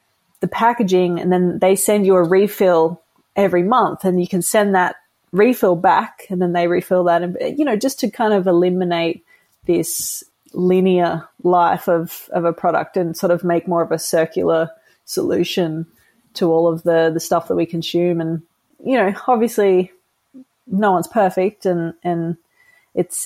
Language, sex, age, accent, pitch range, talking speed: English, female, 30-49, Australian, 170-200 Hz, 170 wpm